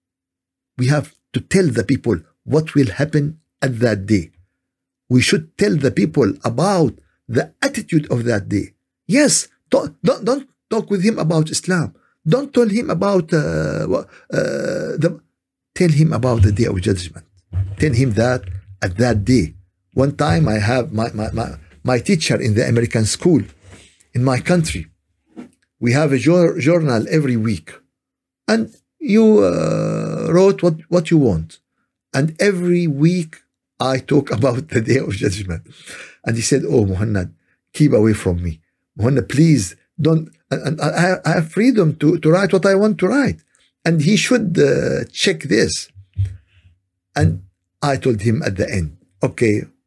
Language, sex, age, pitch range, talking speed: Arabic, male, 50-69, 95-160 Hz, 160 wpm